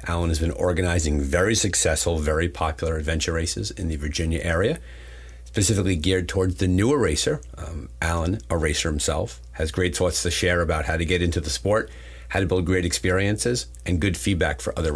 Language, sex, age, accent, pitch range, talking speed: English, male, 40-59, American, 80-95 Hz, 190 wpm